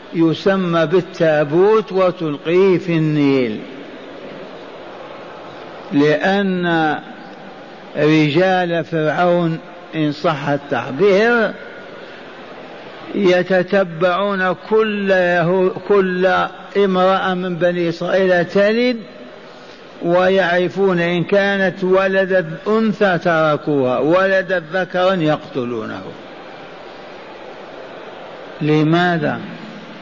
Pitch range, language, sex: 165-190 Hz, Arabic, male